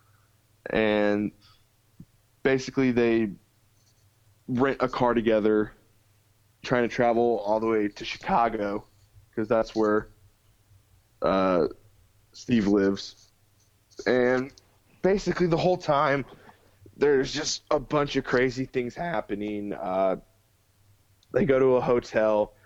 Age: 20-39